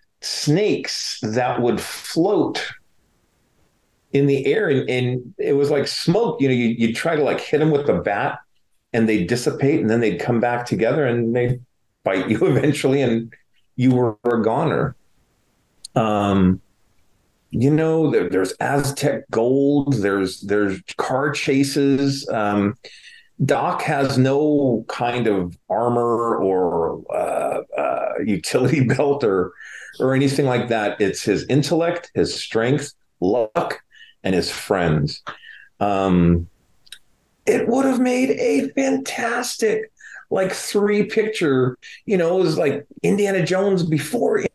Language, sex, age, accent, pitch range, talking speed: English, male, 40-59, American, 115-170 Hz, 135 wpm